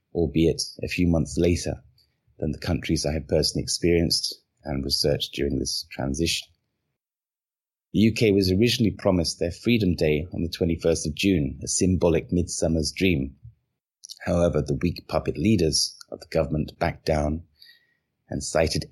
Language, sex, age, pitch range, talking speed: English, male, 30-49, 75-90 Hz, 145 wpm